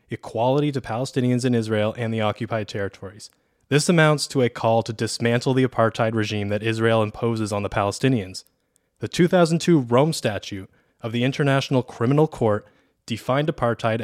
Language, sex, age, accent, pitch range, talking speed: English, male, 20-39, American, 110-135 Hz, 155 wpm